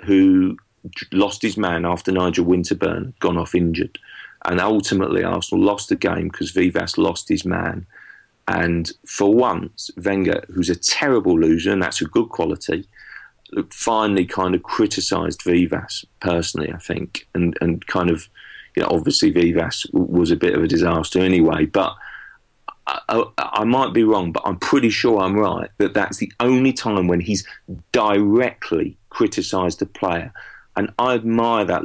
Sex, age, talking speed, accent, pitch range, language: male, 40-59, 155 wpm, British, 85-105 Hz, English